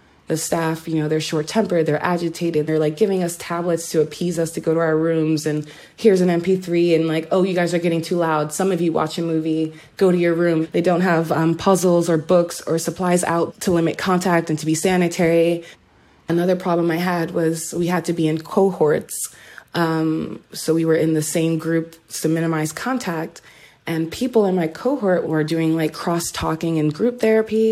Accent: American